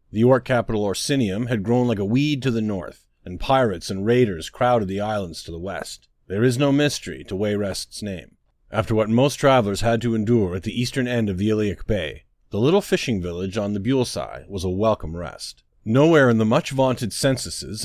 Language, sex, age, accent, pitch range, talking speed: English, male, 40-59, American, 100-125 Hz, 200 wpm